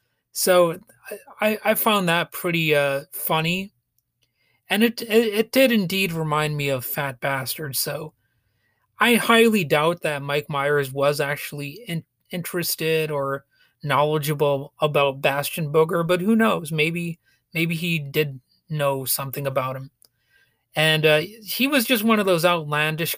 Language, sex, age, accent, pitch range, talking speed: English, male, 30-49, American, 140-180 Hz, 140 wpm